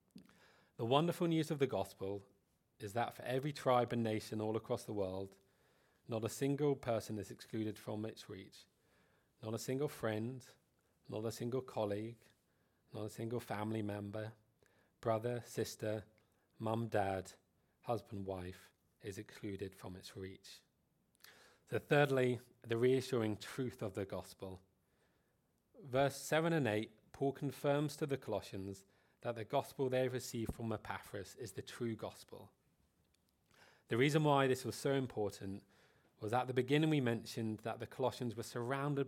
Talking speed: 150 wpm